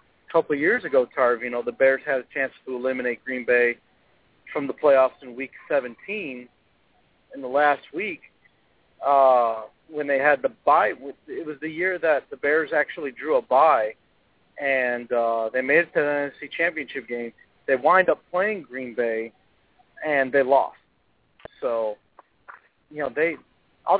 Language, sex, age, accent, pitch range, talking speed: English, male, 40-59, American, 130-180 Hz, 165 wpm